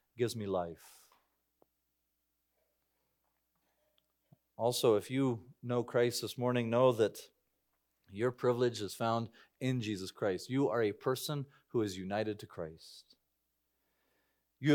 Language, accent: English, American